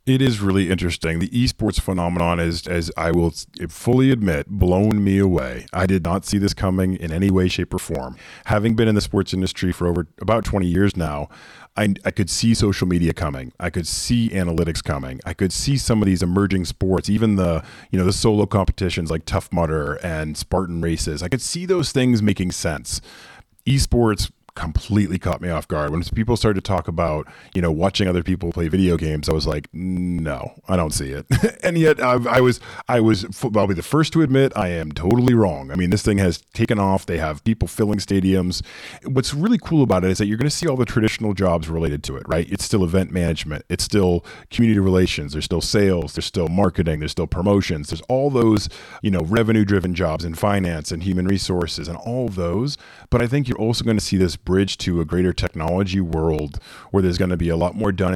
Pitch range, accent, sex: 85-105 Hz, American, male